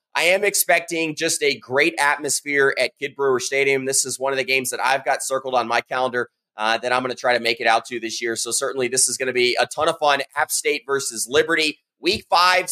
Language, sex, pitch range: English, male, 130-175 Hz